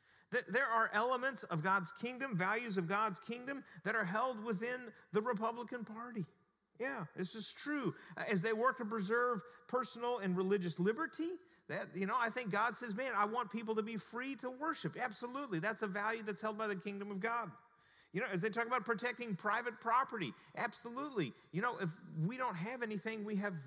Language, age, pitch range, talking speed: English, 40-59, 180-235 Hz, 195 wpm